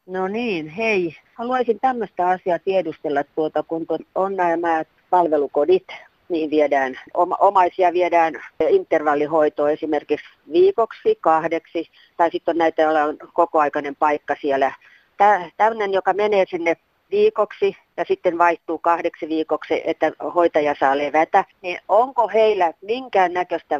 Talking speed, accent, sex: 130 wpm, native, female